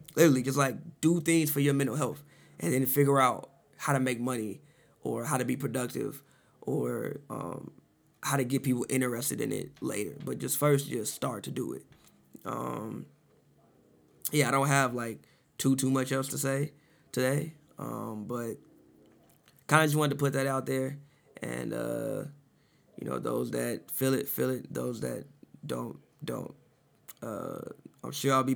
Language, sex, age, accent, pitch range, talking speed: English, male, 20-39, American, 125-145 Hz, 170 wpm